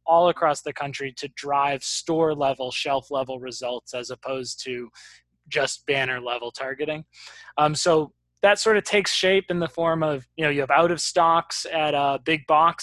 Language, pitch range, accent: English, 140-165 Hz, American